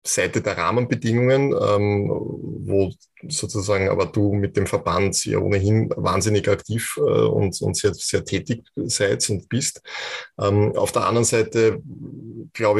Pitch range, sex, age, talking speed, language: 100-115 Hz, male, 20-39, 140 wpm, German